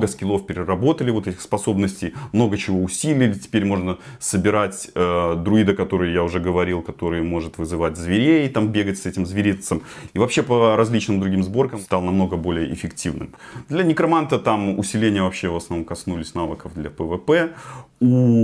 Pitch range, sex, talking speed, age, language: 90-120 Hz, male, 165 wpm, 30-49, Russian